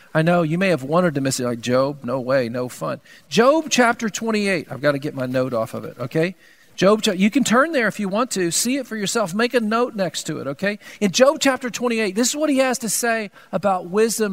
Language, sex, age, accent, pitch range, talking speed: English, male, 50-69, American, 175-235 Hz, 255 wpm